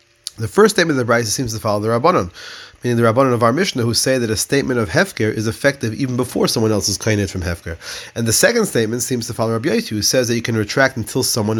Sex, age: male, 30-49